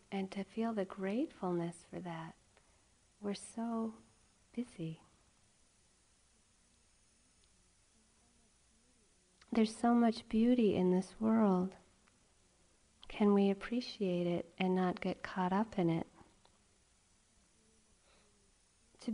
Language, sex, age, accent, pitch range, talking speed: English, female, 40-59, American, 185-215 Hz, 90 wpm